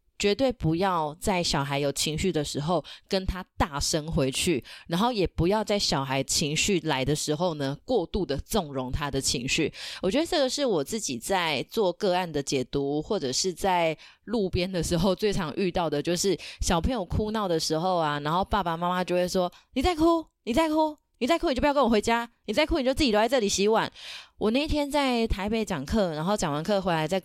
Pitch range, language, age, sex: 160-225 Hz, Chinese, 20-39, female